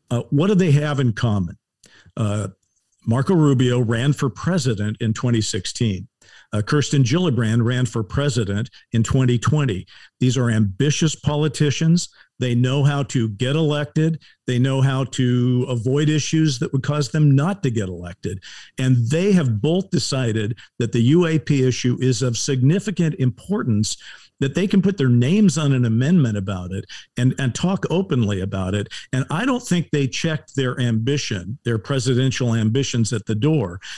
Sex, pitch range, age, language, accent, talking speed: male, 115-155 Hz, 50-69, English, American, 160 wpm